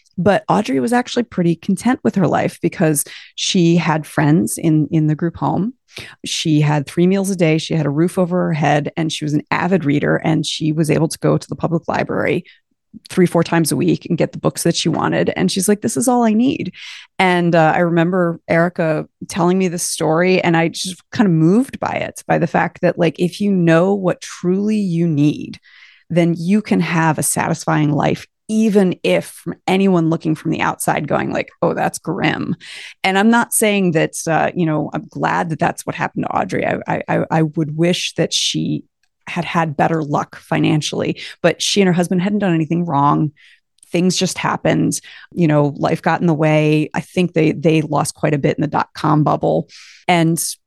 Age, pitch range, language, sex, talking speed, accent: 30-49, 155-185 Hz, English, female, 210 wpm, American